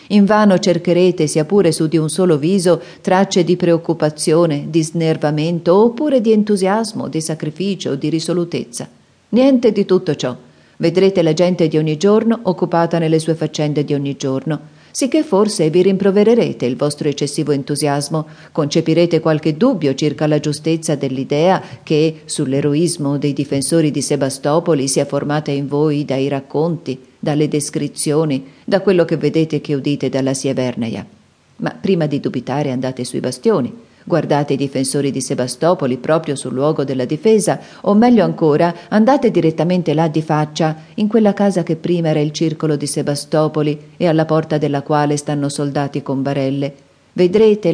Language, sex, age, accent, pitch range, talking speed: Italian, female, 40-59, native, 145-175 Hz, 155 wpm